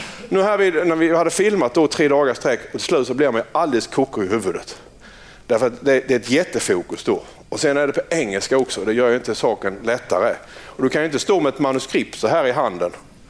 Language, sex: Swedish, male